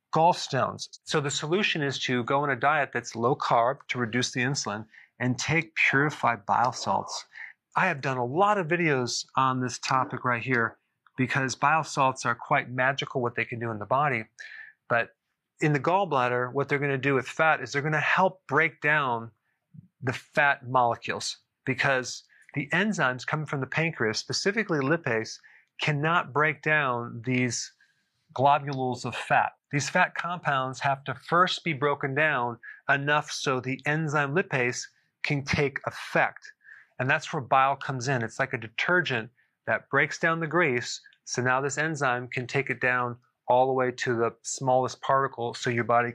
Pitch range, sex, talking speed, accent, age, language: 125-150 Hz, male, 175 wpm, American, 40-59, English